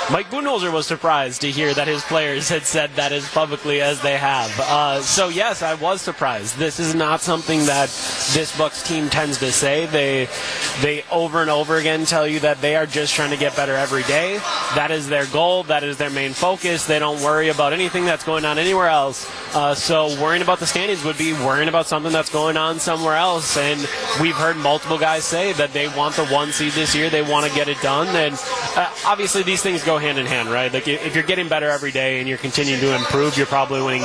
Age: 20-39